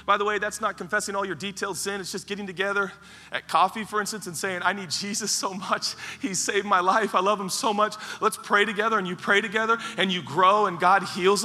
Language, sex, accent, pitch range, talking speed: English, male, American, 205-270 Hz, 245 wpm